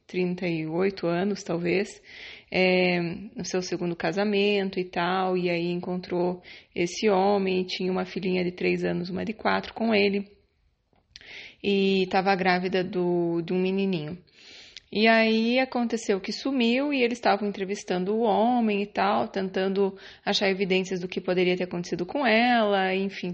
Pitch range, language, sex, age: 185-215 Hz, Portuguese, female, 20-39